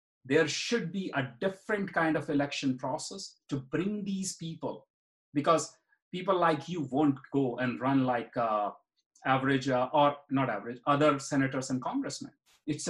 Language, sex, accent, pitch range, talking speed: English, male, Indian, 135-190 Hz, 155 wpm